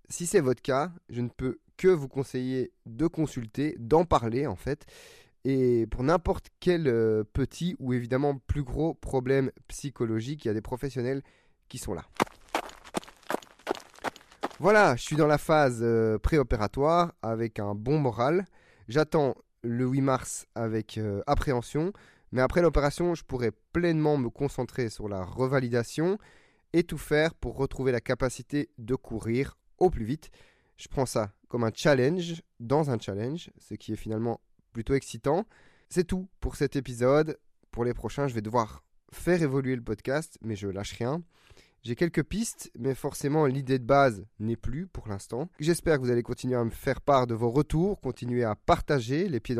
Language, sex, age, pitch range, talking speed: French, male, 20-39, 115-150 Hz, 165 wpm